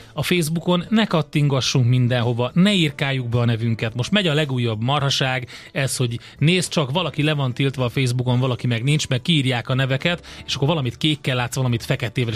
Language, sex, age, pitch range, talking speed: Hungarian, male, 30-49, 125-150 Hz, 190 wpm